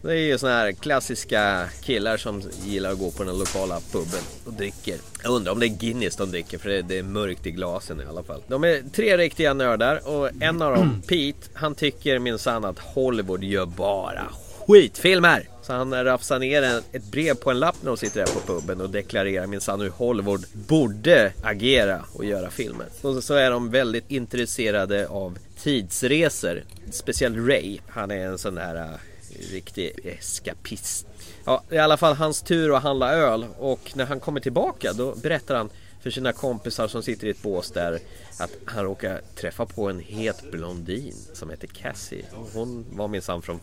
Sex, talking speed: male, 195 wpm